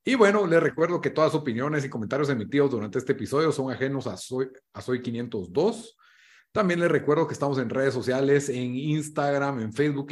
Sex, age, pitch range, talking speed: male, 30-49, 115-150 Hz, 190 wpm